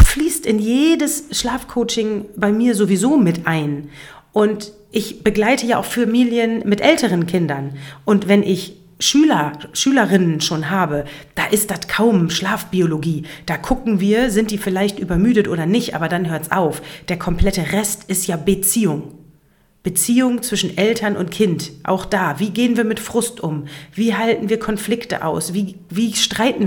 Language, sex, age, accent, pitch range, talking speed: German, female, 40-59, German, 175-230 Hz, 160 wpm